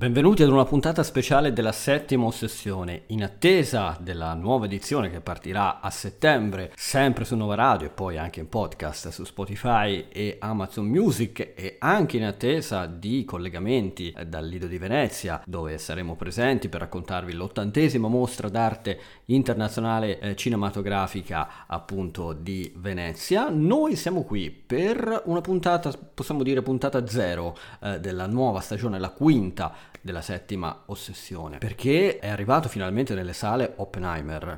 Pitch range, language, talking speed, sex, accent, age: 90-120 Hz, Italian, 140 wpm, male, native, 40-59